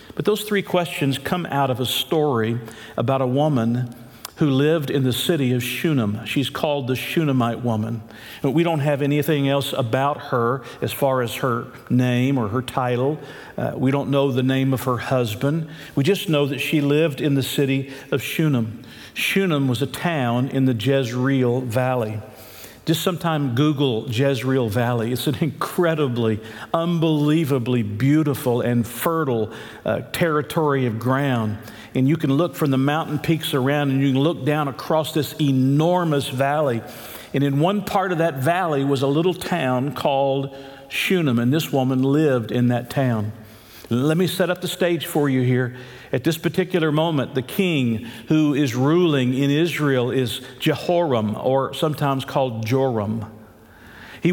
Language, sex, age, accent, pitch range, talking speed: English, male, 50-69, American, 125-155 Hz, 165 wpm